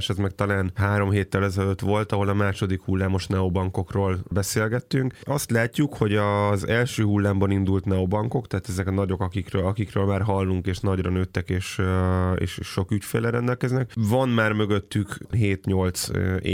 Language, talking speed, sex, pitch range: Hungarian, 150 wpm, male, 95-110 Hz